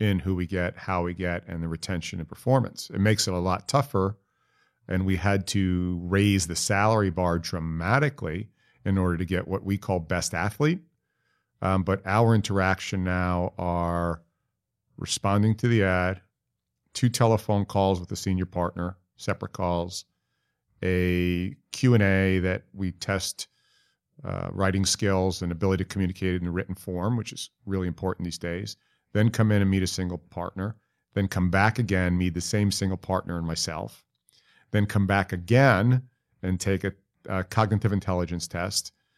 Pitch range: 90-110 Hz